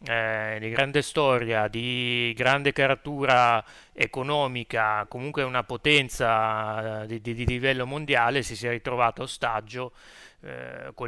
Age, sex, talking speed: 30-49, male, 120 wpm